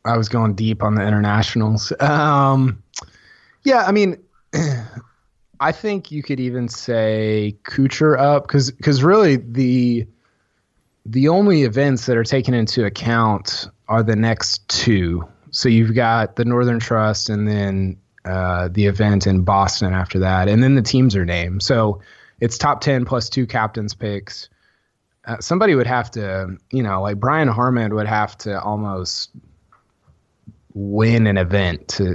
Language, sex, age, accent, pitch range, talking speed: English, male, 20-39, American, 100-135 Hz, 155 wpm